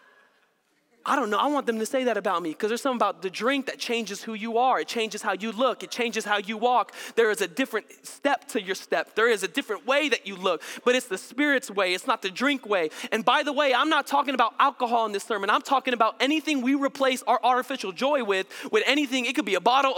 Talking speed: 260 wpm